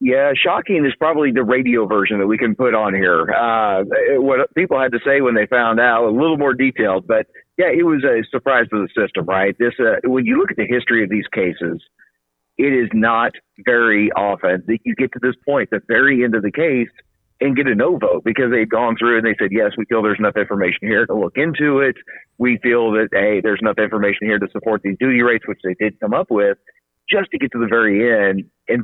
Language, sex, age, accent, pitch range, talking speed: English, male, 40-59, American, 100-125 Hz, 240 wpm